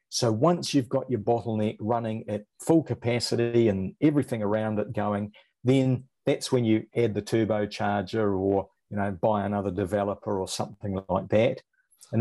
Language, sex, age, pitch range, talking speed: English, male, 50-69, 105-130 Hz, 160 wpm